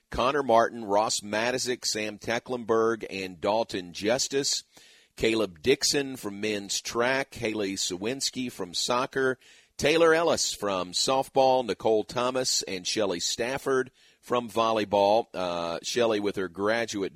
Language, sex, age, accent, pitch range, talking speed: English, male, 40-59, American, 95-120 Hz, 120 wpm